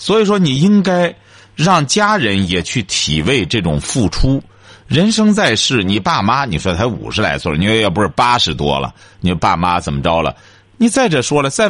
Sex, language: male, Chinese